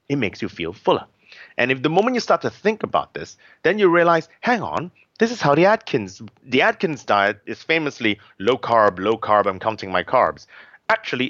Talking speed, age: 205 wpm, 30-49